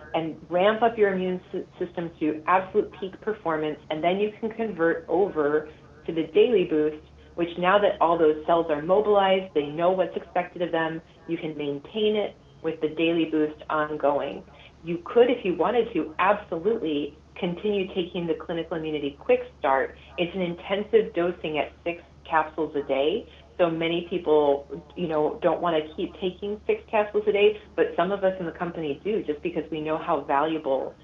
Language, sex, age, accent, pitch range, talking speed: English, female, 30-49, American, 155-195 Hz, 180 wpm